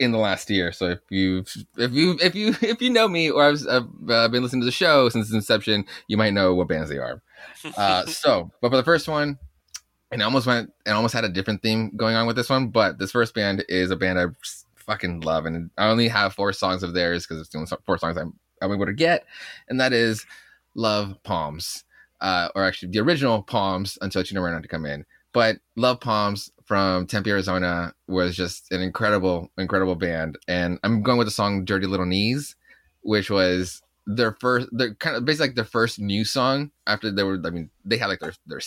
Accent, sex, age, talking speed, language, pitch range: American, male, 20-39, 230 wpm, English, 90-115 Hz